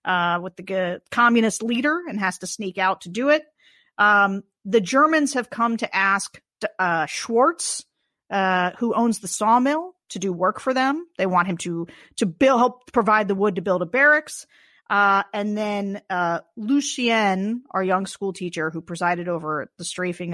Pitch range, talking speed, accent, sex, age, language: 180-245 Hz, 180 wpm, American, female, 40-59, English